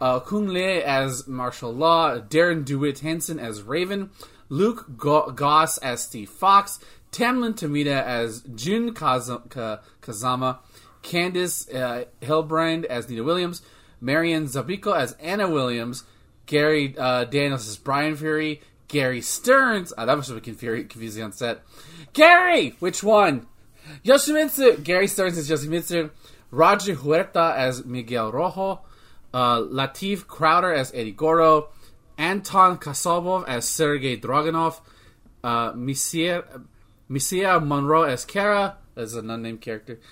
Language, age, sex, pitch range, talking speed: English, 20-39, male, 120-165 Hz, 130 wpm